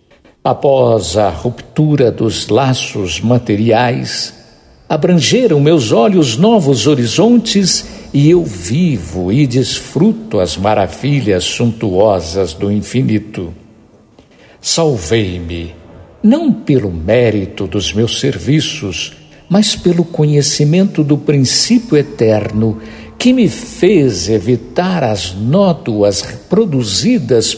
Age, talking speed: 60-79, 90 wpm